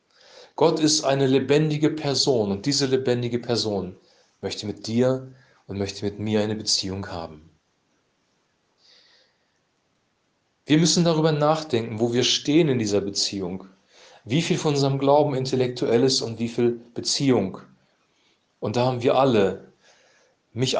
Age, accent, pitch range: 40-59, German, 110-130 Hz